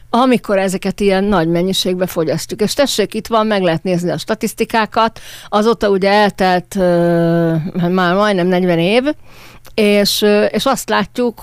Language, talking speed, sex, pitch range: Hungarian, 140 wpm, female, 170-210 Hz